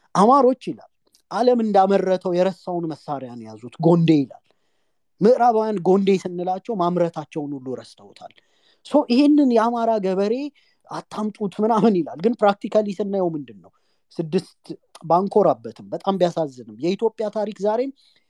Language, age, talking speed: English, 30-49, 140 wpm